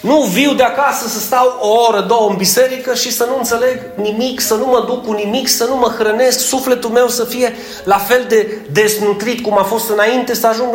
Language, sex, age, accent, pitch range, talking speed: Romanian, male, 30-49, native, 200-255 Hz, 225 wpm